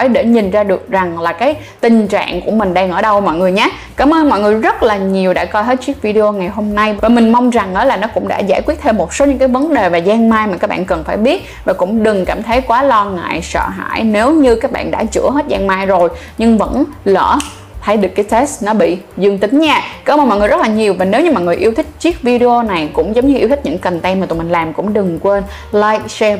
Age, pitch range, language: 10-29, 185-250 Hz, Vietnamese